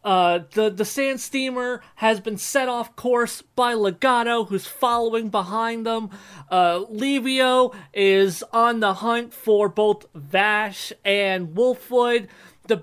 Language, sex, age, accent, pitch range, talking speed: English, male, 30-49, American, 195-260 Hz, 130 wpm